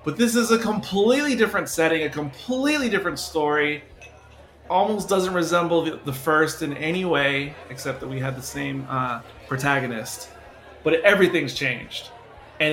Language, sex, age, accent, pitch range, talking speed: English, male, 30-49, American, 130-155 Hz, 150 wpm